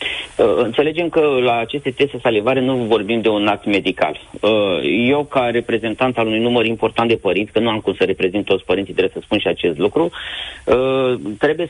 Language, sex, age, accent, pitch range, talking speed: Romanian, male, 30-49, native, 110-130 Hz, 200 wpm